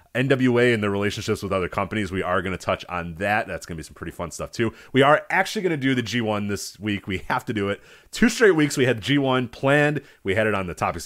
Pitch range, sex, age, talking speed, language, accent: 95-130 Hz, male, 30-49, 275 wpm, English, American